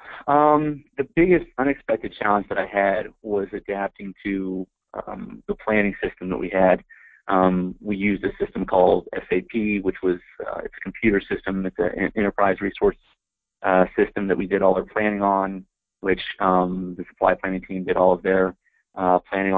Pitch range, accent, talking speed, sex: 95-105 Hz, American, 175 wpm, male